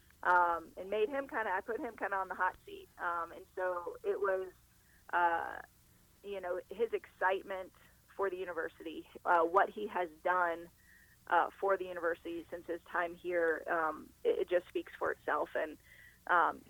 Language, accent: English, American